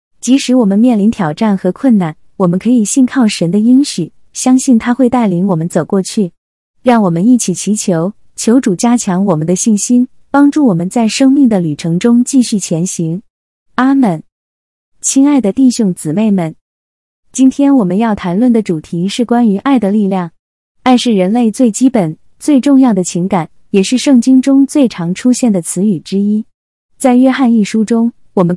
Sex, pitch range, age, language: female, 180-245 Hz, 20-39, Chinese